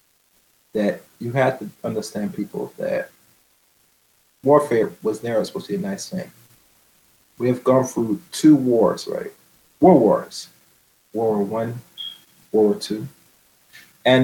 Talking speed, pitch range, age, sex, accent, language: 135 wpm, 110-140 Hz, 30-49, male, American, English